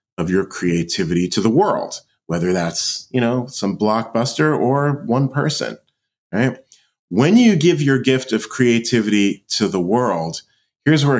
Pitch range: 105-135 Hz